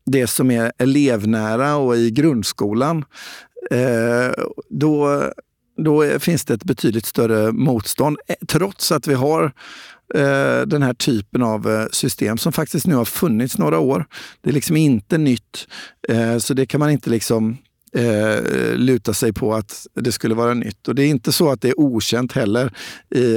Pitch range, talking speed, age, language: 115-145 Hz, 155 wpm, 50-69, Swedish